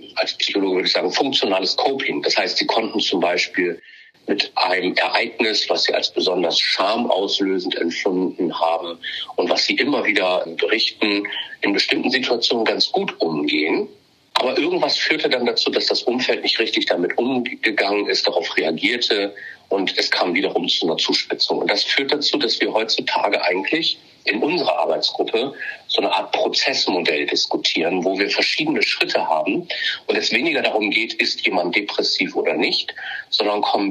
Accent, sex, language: German, male, German